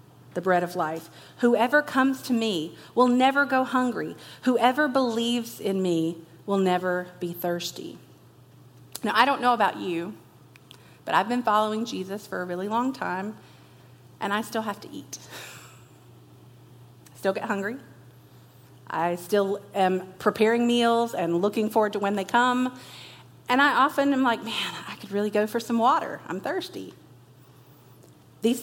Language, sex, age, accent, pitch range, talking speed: English, female, 40-59, American, 175-230 Hz, 155 wpm